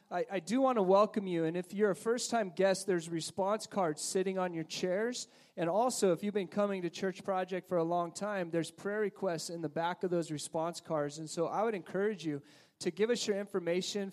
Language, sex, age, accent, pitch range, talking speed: English, male, 30-49, American, 160-200 Hz, 230 wpm